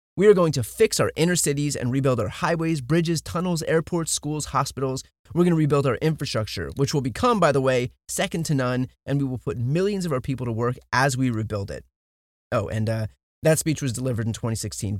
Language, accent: English, American